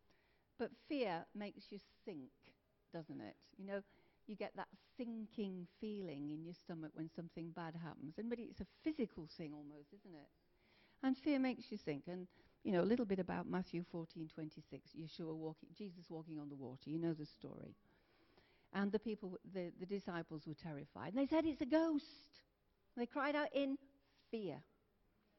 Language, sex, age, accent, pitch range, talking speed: English, female, 60-79, British, 165-240 Hz, 180 wpm